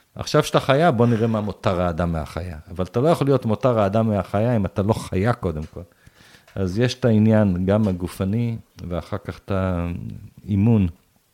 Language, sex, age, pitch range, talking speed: Hebrew, male, 50-69, 90-115 Hz, 175 wpm